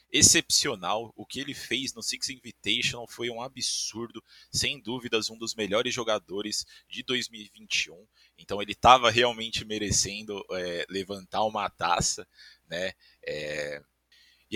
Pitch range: 100-135 Hz